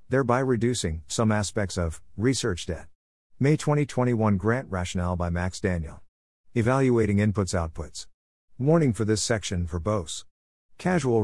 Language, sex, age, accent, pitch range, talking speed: English, male, 50-69, American, 90-115 Hz, 130 wpm